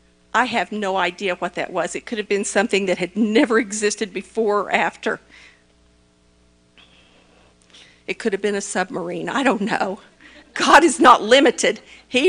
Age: 50-69